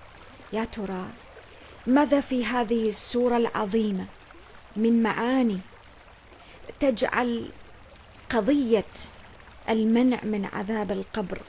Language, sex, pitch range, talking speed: English, female, 195-240 Hz, 80 wpm